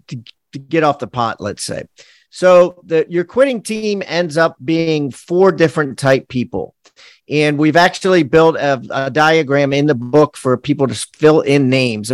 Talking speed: 175 wpm